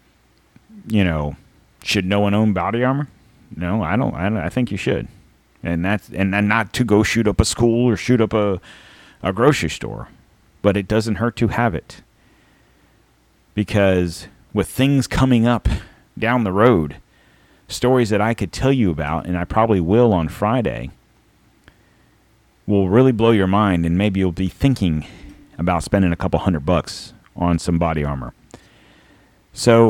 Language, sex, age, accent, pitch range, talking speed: English, male, 40-59, American, 90-115 Hz, 170 wpm